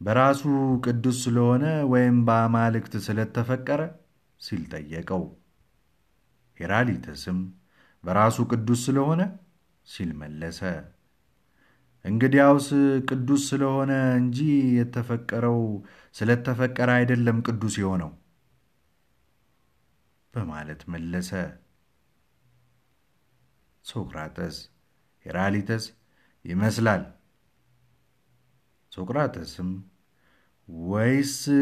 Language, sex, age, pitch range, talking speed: Amharic, male, 50-69, 95-125 Hz, 55 wpm